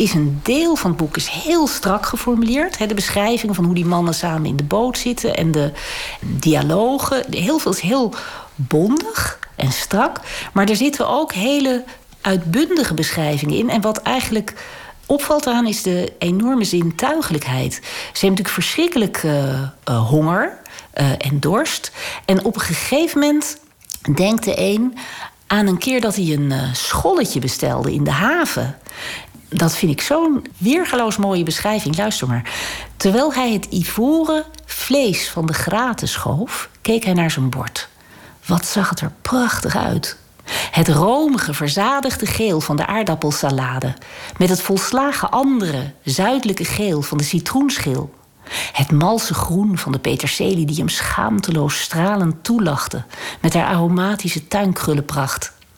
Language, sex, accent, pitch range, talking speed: Dutch, female, Dutch, 160-245 Hz, 150 wpm